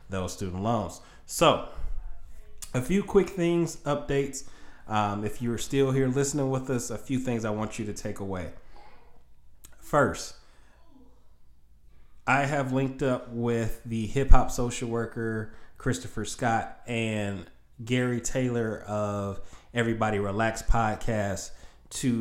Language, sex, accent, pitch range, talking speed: English, male, American, 105-125 Hz, 125 wpm